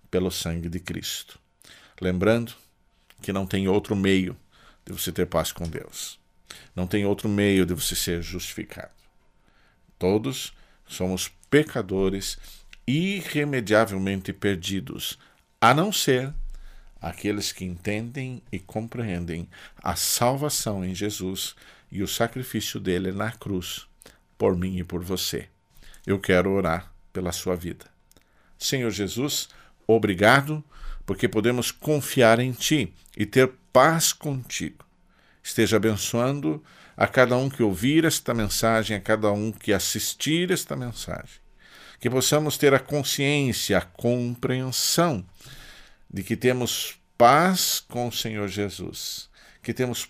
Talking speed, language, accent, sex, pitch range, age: 125 wpm, Portuguese, Brazilian, male, 95-130 Hz, 50-69